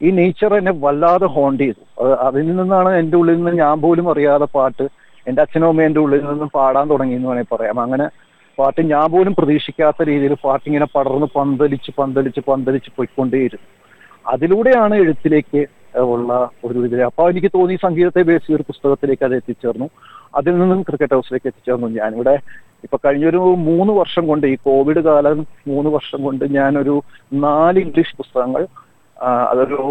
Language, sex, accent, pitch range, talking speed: Malayalam, male, native, 130-155 Hz, 145 wpm